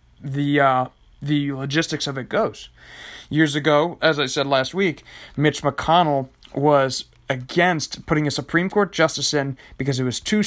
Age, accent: 30-49, American